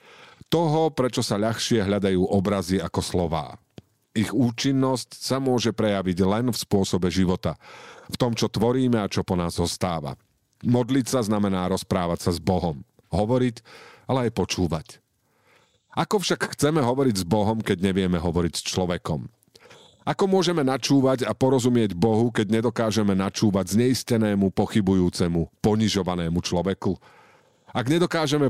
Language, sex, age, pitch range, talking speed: Slovak, male, 50-69, 95-125 Hz, 130 wpm